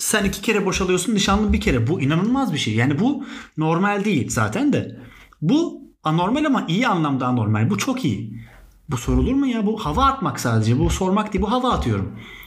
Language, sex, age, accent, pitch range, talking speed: Turkish, male, 30-49, native, 140-225 Hz, 190 wpm